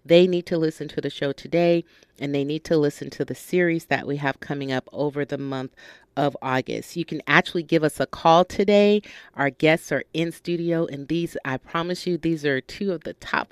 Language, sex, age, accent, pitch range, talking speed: English, female, 40-59, American, 145-175 Hz, 220 wpm